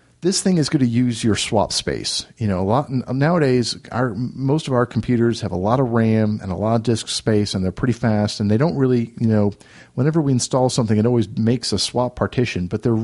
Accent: American